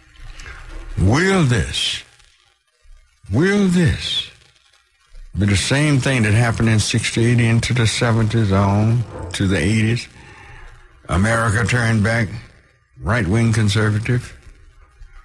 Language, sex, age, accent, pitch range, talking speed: English, male, 60-79, American, 95-125 Hz, 95 wpm